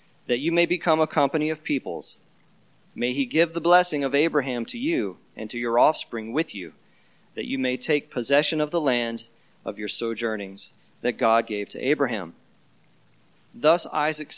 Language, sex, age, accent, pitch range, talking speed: English, male, 30-49, American, 115-155 Hz, 170 wpm